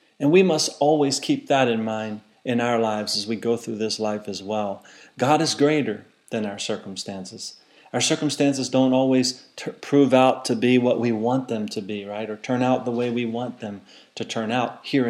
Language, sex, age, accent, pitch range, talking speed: English, male, 40-59, American, 110-130 Hz, 205 wpm